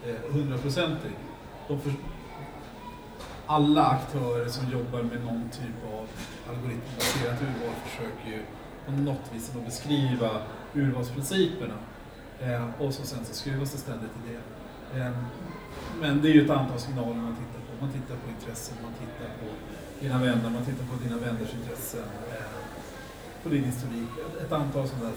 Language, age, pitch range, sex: Swedish, 40-59, 120-145 Hz, male